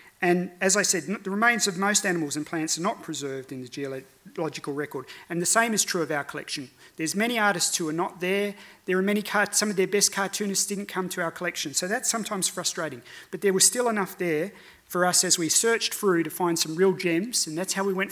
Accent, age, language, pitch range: Australian, 30-49, English, 155-195 Hz